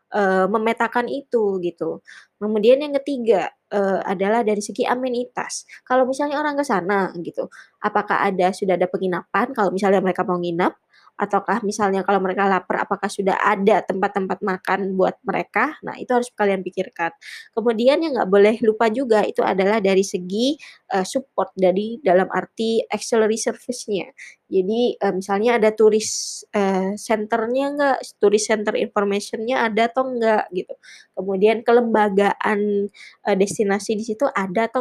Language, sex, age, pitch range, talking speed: Indonesian, female, 20-39, 195-245 Hz, 145 wpm